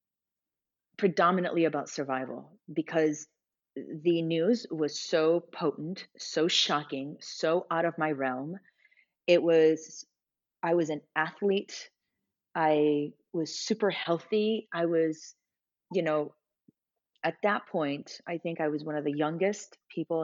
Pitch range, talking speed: 145-175 Hz, 125 wpm